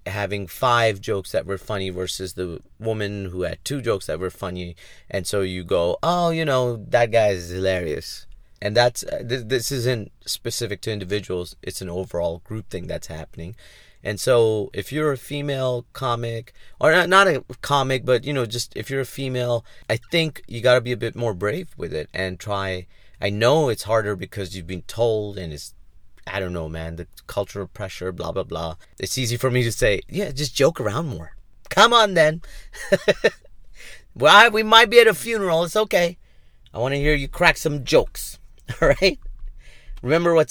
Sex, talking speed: male, 195 wpm